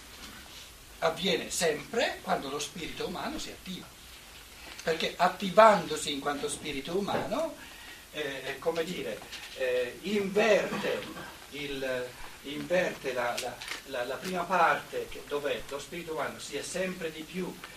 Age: 60-79